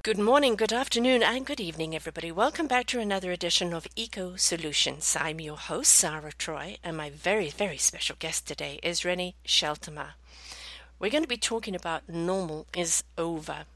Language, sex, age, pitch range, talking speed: English, female, 50-69, 165-220 Hz, 175 wpm